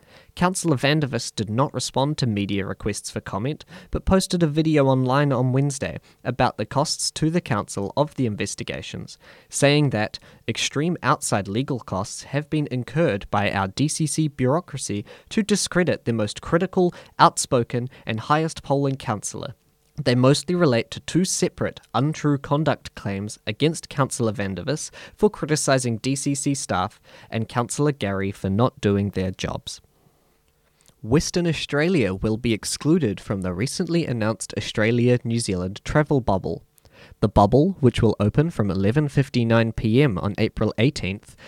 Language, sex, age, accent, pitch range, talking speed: English, male, 10-29, Australian, 105-150 Hz, 140 wpm